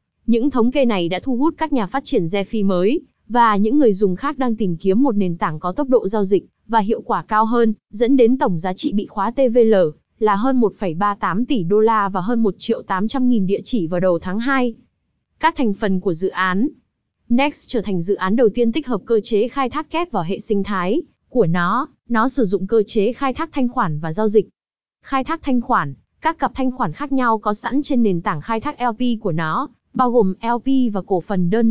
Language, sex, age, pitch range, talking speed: Vietnamese, female, 20-39, 205-255 Hz, 235 wpm